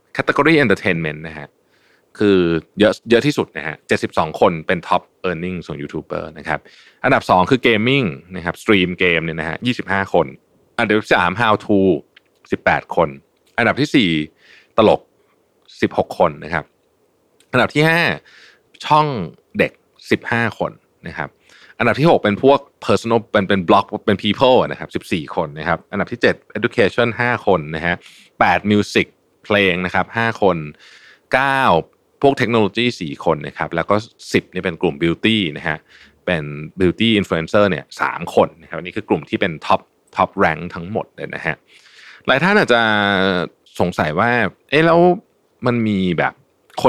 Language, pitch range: Thai, 85-115 Hz